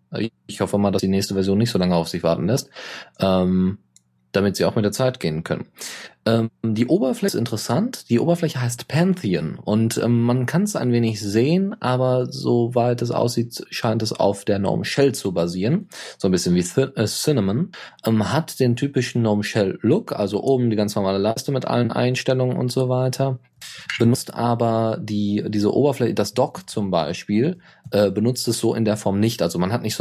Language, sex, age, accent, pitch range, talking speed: German, male, 20-39, German, 100-130 Hz, 200 wpm